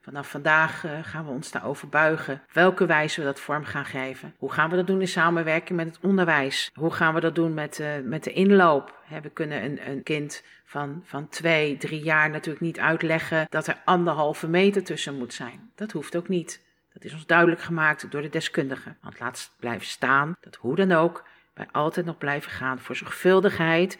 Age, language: 50-69, Dutch